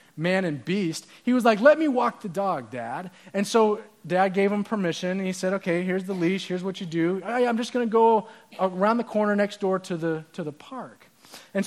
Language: English